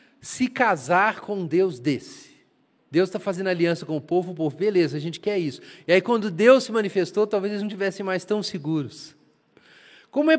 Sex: male